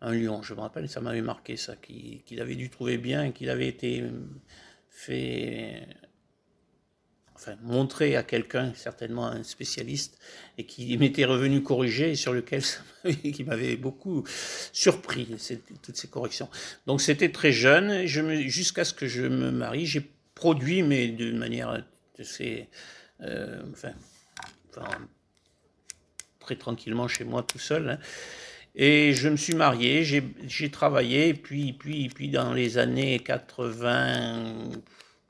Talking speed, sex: 150 wpm, male